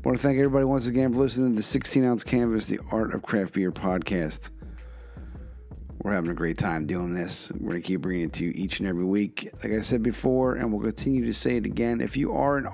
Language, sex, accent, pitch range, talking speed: English, male, American, 90-120 Hz, 250 wpm